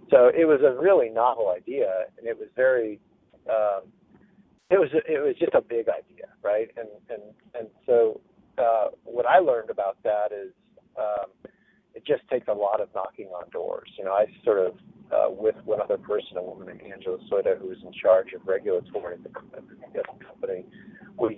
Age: 50-69